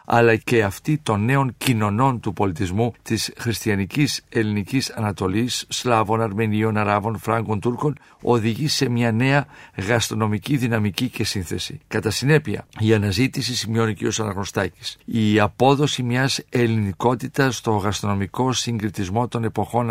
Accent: Spanish